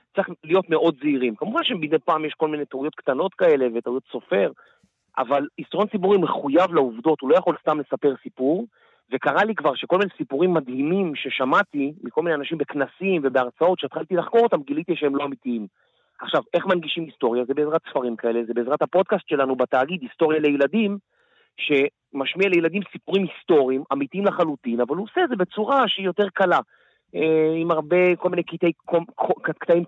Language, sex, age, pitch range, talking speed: Hebrew, male, 40-59, 135-180 Hz, 145 wpm